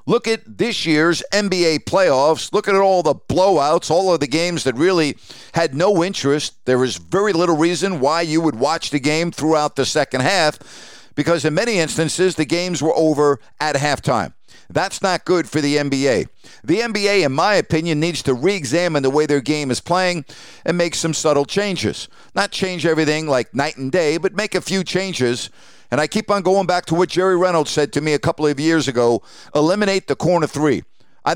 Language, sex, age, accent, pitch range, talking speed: English, male, 50-69, American, 145-180 Hz, 200 wpm